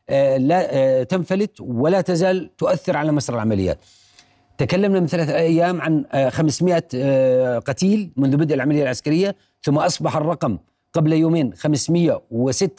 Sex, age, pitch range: male, 40-59, 150-190 Hz